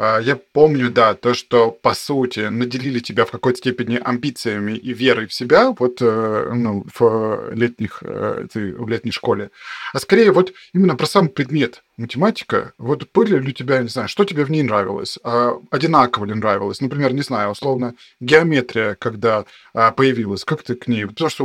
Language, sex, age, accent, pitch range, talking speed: Russian, male, 20-39, native, 120-150 Hz, 160 wpm